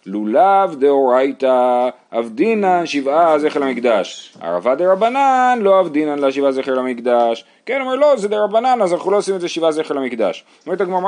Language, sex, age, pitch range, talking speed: Hebrew, male, 30-49, 120-180 Hz, 160 wpm